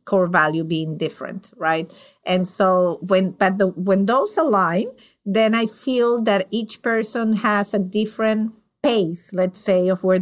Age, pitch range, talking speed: 50-69, 180-215 Hz, 160 wpm